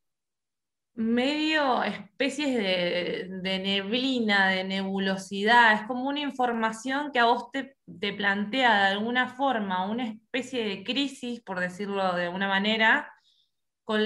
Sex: female